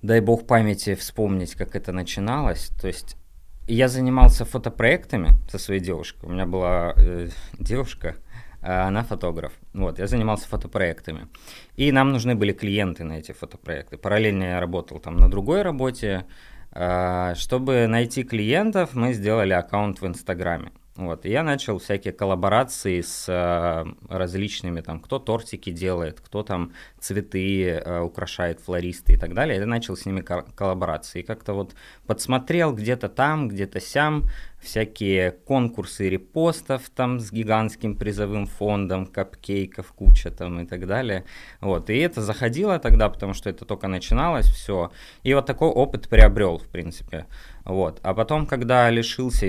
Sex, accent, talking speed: male, native, 145 wpm